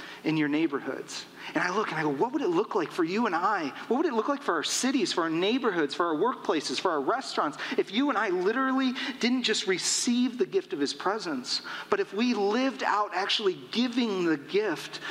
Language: English